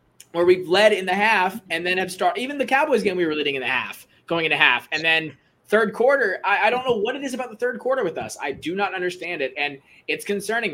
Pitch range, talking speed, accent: 175-240 Hz, 270 wpm, American